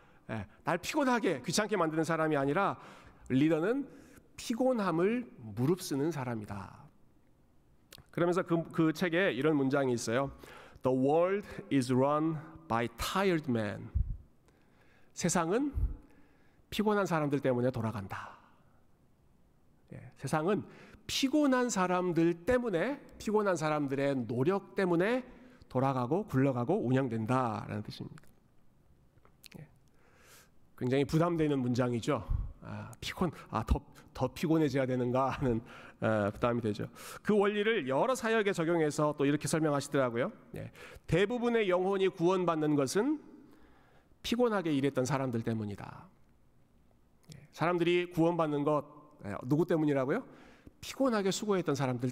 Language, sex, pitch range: Korean, male, 130-190 Hz